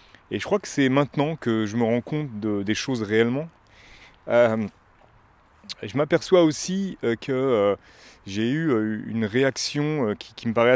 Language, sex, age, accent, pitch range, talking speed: French, male, 30-49, French, 105-140 Hz, 180 wpm